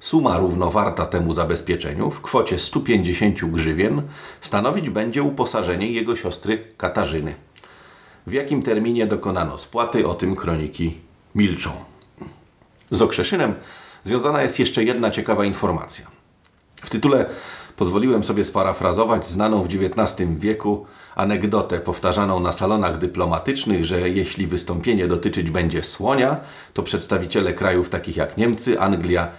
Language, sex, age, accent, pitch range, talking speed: Polish, male, 40-59, native, 90-110 Hz, 120 wpm